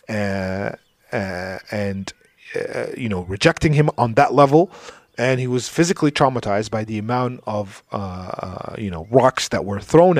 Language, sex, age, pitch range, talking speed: English, male, 40-59, 110-155 Hz, 165 wpm